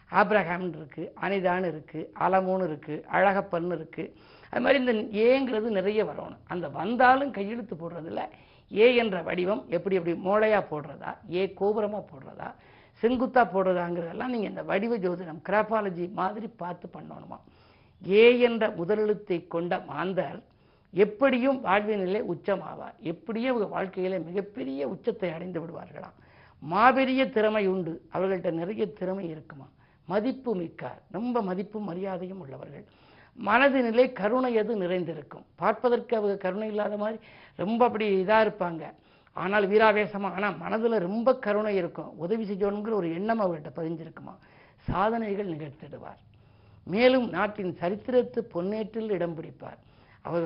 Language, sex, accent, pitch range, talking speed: Tamil, female, native, 170-220 Hz, 120 wpm